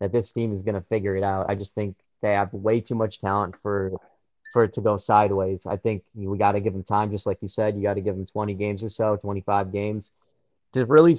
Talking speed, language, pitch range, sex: 245 wpm, English, 105-130 Hz, male